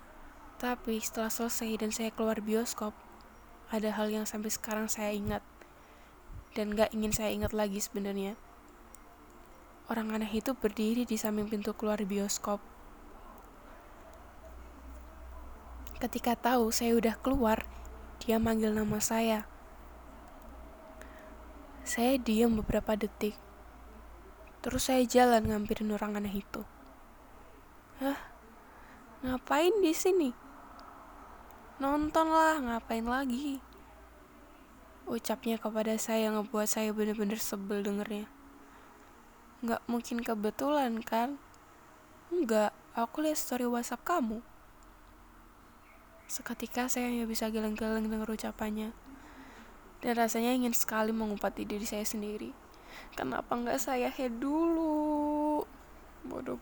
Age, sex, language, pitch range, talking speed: 10-29, female, Malay, 215-255 Hz, 105 wpm